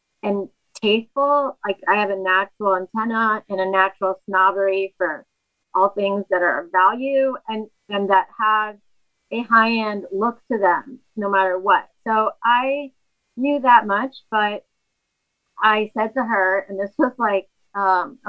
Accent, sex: American, female